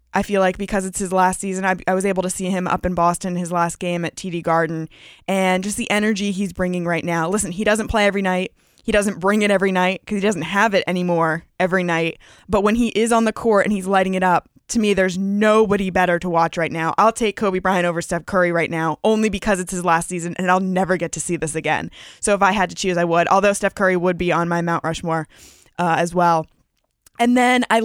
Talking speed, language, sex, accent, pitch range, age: 255 wpm, English, female, American, 170-210 Hz, 20-39